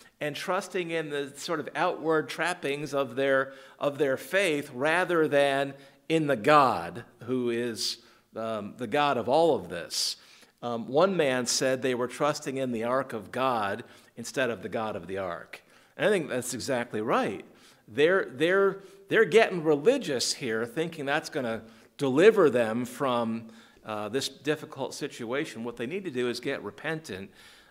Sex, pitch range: male, 125-185 Hz